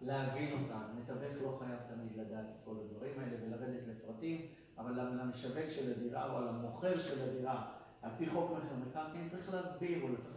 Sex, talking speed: male, 175 wpm